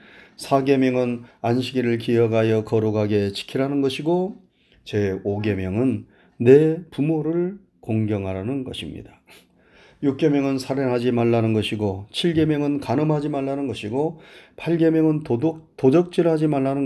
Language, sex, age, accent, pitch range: Korean, male, 30-49, native, 115-165 Hz